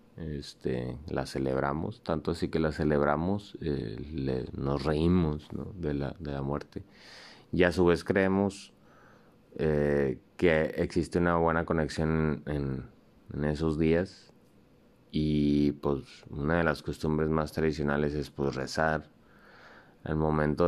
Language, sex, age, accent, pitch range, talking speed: Spanish, male, 30-49, Mexican, 75-85 Hz, 135 wpm